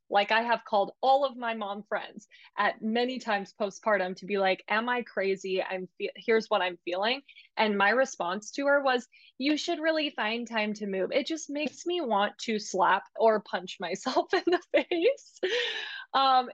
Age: 20-39